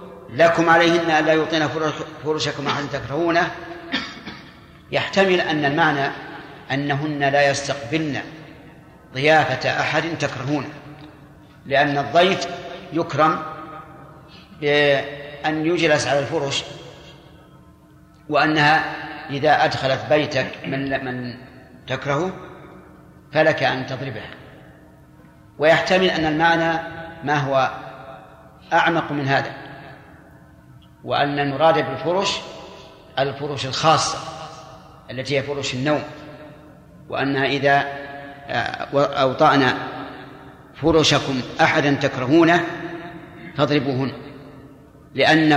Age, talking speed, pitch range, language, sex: 50-69, 75 wpm, 140-160 Hz, Arabic, male